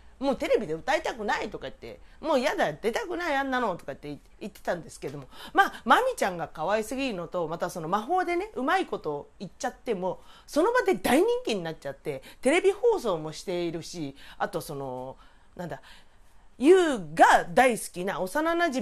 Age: 40-59